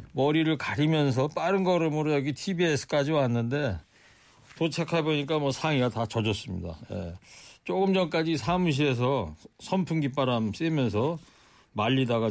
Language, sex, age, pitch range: Korean, male, 40-59, 125-175 Hz